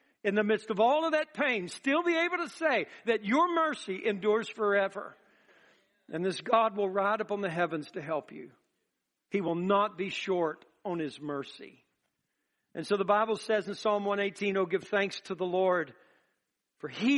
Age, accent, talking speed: 60-79, American, 190 wpm